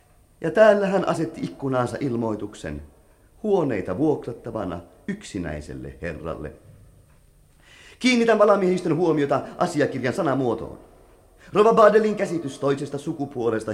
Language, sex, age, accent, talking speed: Finnish, male, 30-49, native, 85 wpm